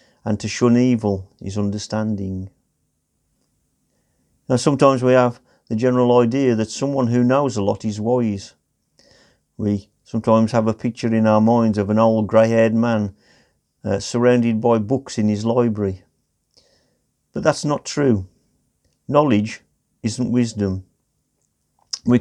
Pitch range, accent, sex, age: 105-125 Hz, British, male, 50-69